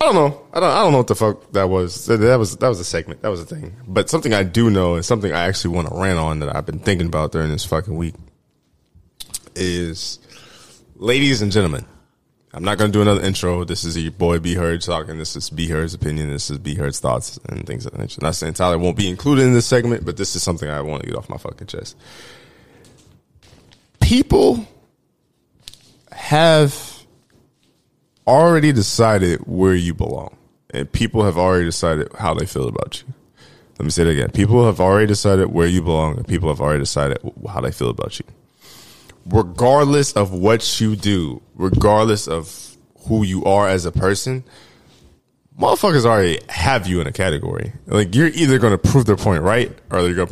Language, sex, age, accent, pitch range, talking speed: English, male, 20-39, American, 85-110 Hz, 200 wpm